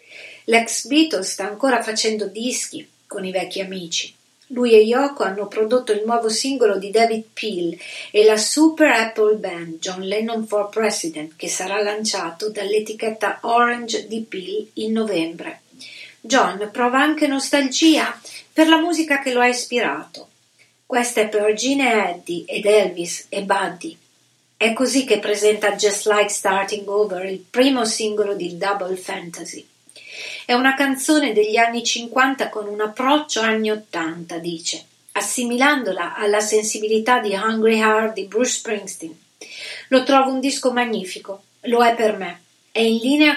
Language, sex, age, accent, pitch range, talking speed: Italian, female, 40-59, native, 200-245 Hz, 150 wpm